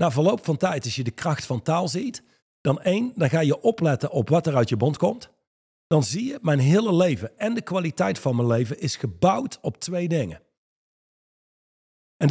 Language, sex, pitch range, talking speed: Dutch, male, 135-190 Hz, 205 wpm